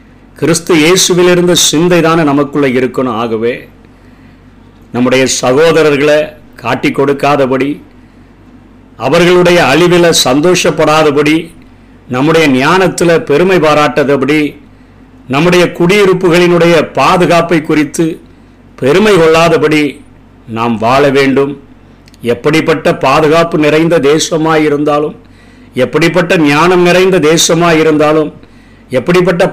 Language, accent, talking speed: Tamil, native, 75 wpm